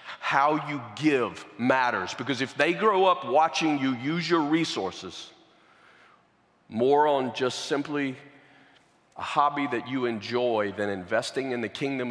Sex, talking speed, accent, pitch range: male, 140 wpm, American, 115-165 Hz